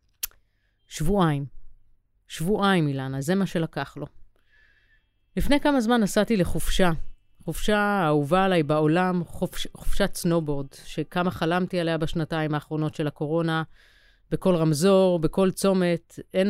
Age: 30-49